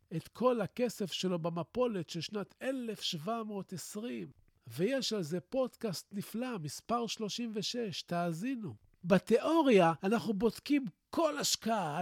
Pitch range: 170-245 Hz